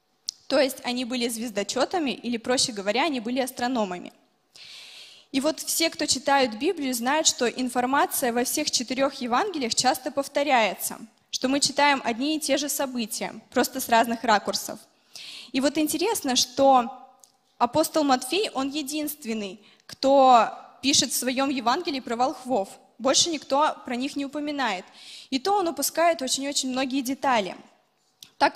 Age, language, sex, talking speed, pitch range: 20-39, Russian, female, 140 wpm, 240-280 Hz